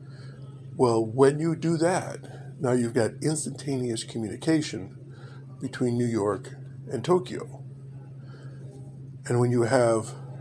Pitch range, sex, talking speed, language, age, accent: 125-135 Hz, male, 110 wpm, English, 50-69, American